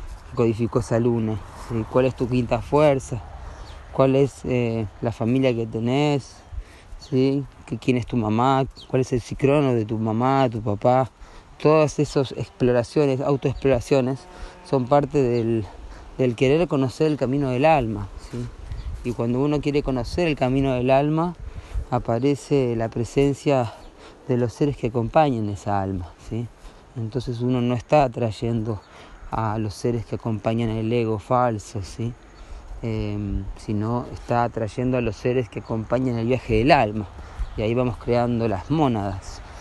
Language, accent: Spanish, Argentinian